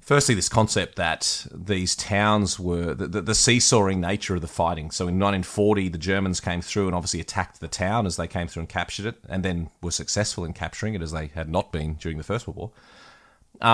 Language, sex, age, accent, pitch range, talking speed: English, male, 30-49, Australian, 85-110 Hz, 225 wpm